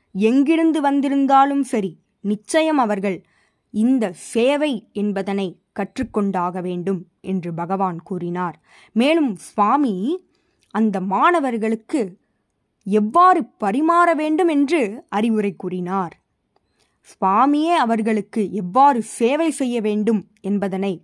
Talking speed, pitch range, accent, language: 85 wpm, 195-275 Hz, native, Tamil